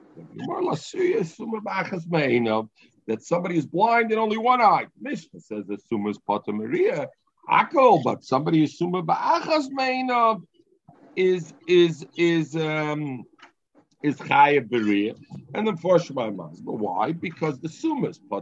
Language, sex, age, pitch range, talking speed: English, male, 50-69, 120-185 Hz, 110 wpm